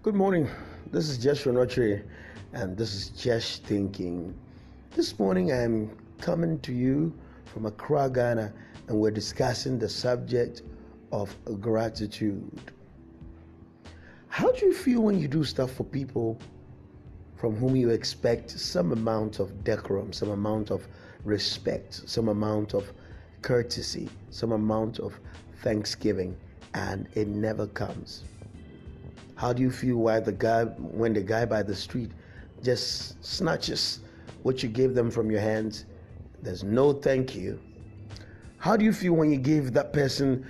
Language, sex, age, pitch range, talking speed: English, male, 30-49, 105-135 Hz, 145 wpm